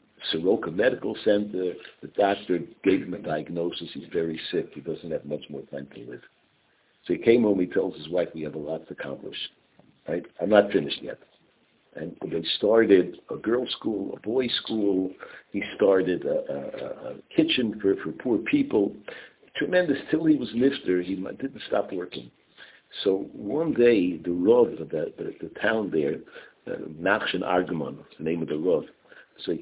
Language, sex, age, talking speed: English, male, 60-79, 175 wpm